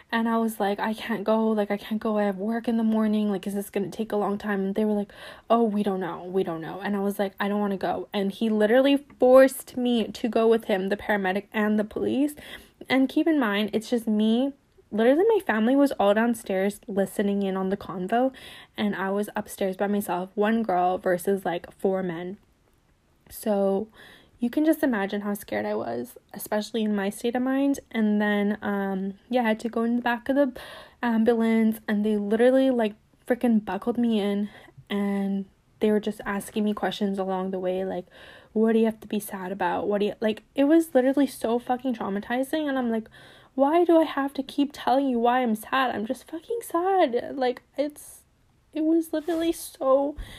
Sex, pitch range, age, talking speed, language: female, 200-255 Hz, 10-29, 215 wpm, English